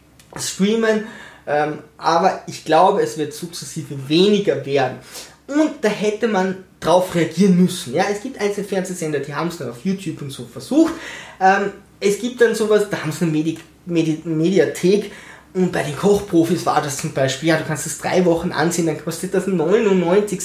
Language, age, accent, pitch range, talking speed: German, 20-39, German, 160-210 Hz, 180 wpm